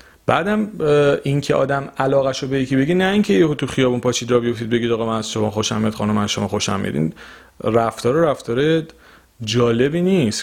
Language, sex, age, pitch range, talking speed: Persian, male, 40-59, 105-150 Hz, 160 wpm